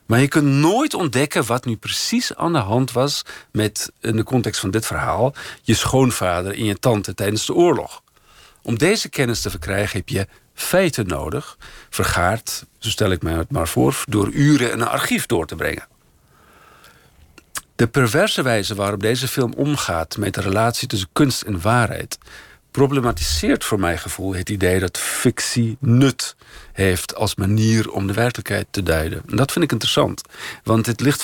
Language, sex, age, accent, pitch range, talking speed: Dutch, male, 50-69, Dutch, 100-130 Hz, 175 wpm